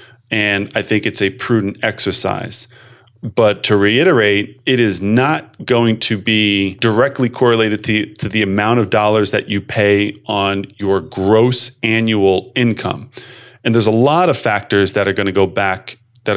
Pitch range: 105-120 Hz